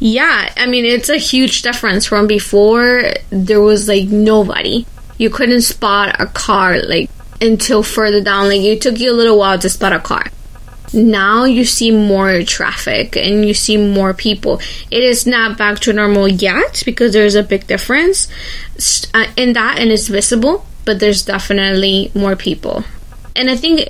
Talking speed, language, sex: 170 wpm, English, female